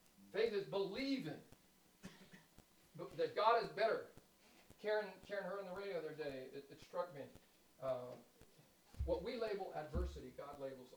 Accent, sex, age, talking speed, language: American, male, 50-69, 150 wpm, English